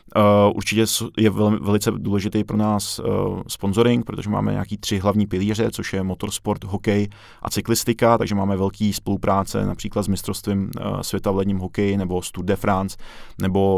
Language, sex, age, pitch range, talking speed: Czech, male, 20-39, 95-105 Hz, 170 wpm